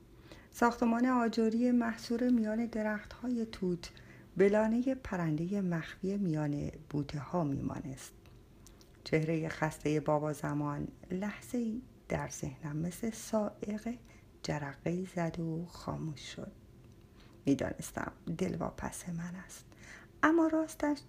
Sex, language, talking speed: female, Persian, 100 wpm